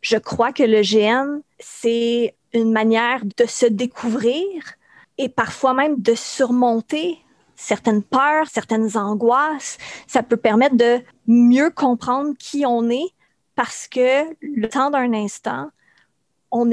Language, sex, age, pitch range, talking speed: French, female, 30-49, 230-275 Hz, 130 wpm